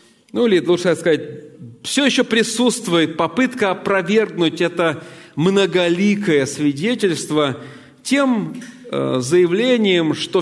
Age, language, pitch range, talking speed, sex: 40-59, Russian, 175-235 Hz, 85 wpm, male